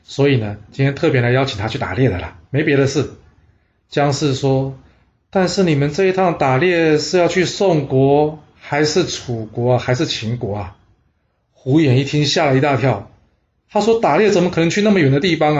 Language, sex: Chinese, male